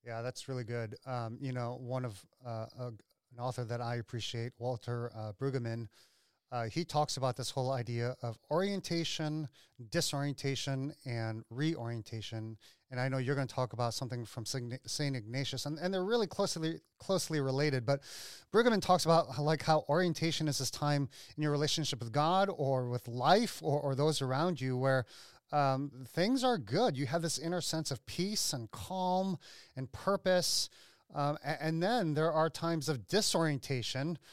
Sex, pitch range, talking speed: male, 130-170 Hz, 170 wpm